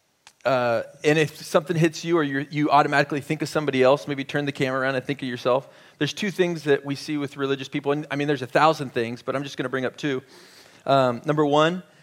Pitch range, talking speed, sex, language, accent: 135-160 Hz, 245 wpm, male, English, American